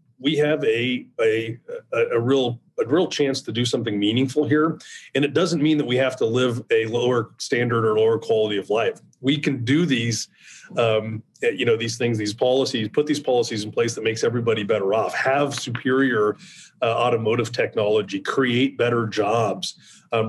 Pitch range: 110-140 Hz